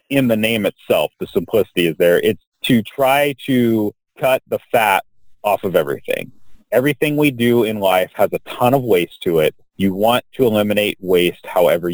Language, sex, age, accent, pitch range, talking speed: English, male, 30-49, American, 100-125 Hz, 180 wpm